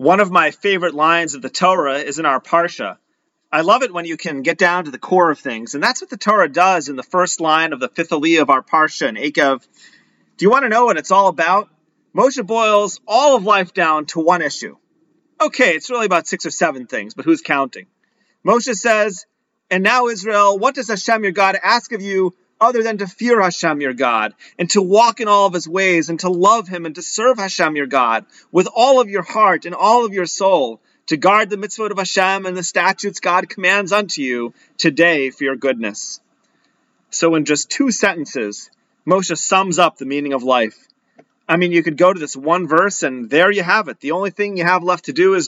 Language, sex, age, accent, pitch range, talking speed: English, male, 30-49, American, 160-215 Hz, 230 wpm